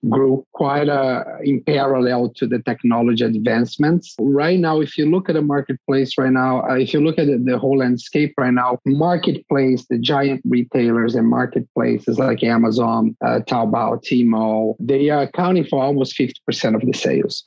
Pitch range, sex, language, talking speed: 125-155 Hz, male, English, 170 wpm